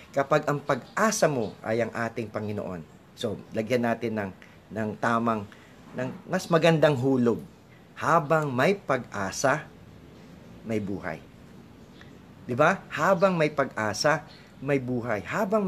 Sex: male